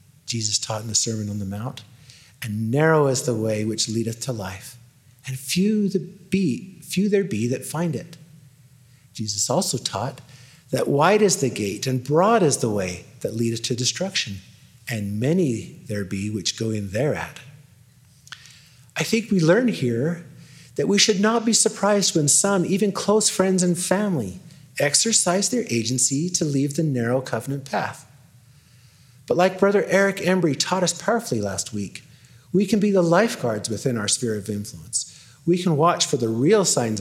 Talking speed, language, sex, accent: 170 wpm, English, male, American